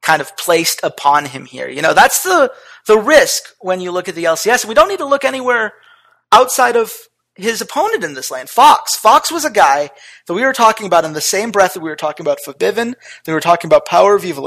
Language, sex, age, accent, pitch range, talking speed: English, male, 30-49, American, 170-270 Hz, 250 wpm